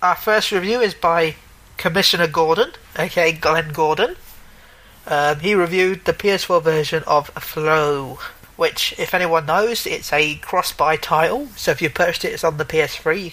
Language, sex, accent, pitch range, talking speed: English, male, British, 150-175 Hz, 160 wpm